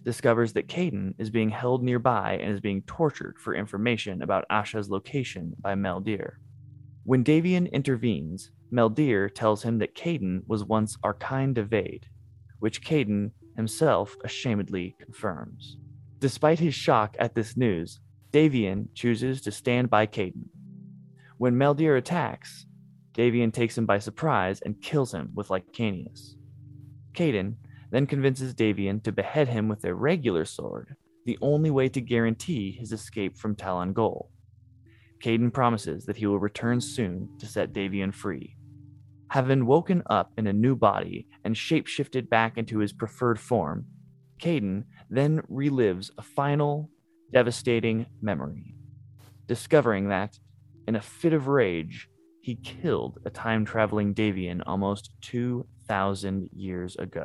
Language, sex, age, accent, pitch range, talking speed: English, male, 20-39, American, 105-130 Hz, 135 wpm